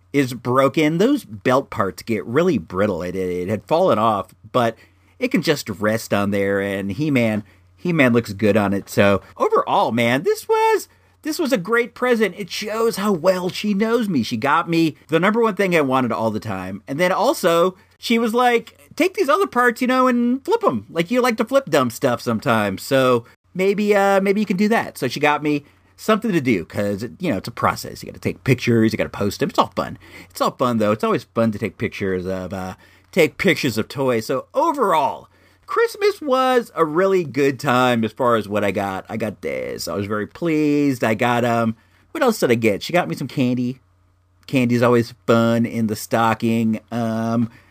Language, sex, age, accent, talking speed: English, male, 40-59, American, 215 wpm